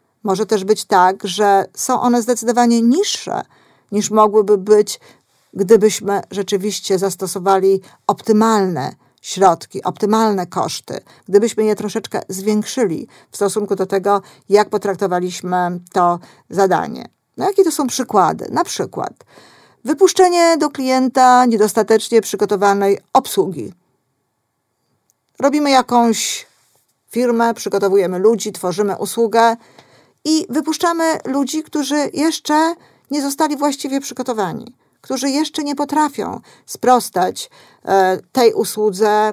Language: Polish